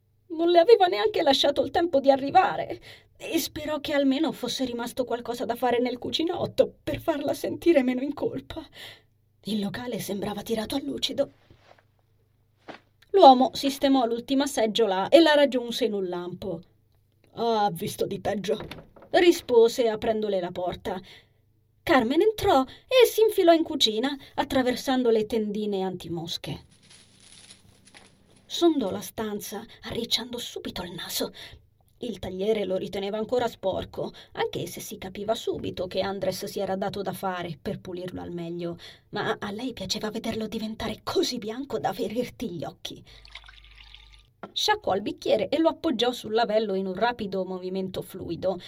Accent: native